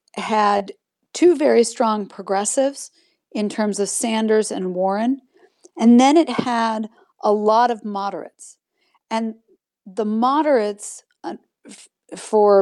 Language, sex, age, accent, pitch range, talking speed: English, female, 40-59, American, 200-245 Hz, 110 wpm